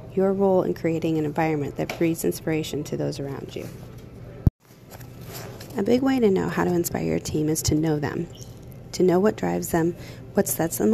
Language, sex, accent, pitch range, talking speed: English, female, American, 135-175 Hz, 190 wpm